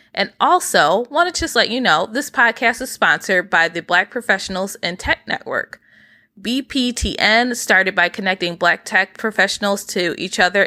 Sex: female